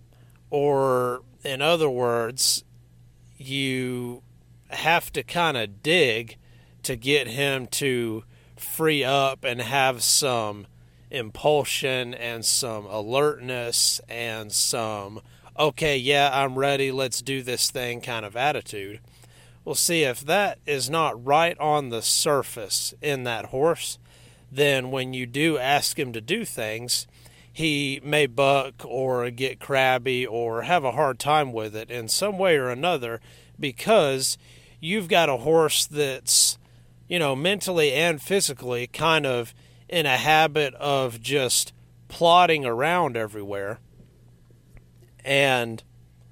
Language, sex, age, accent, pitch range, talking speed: English, male, 30-49, American, 110-145 Hz, 125 wpm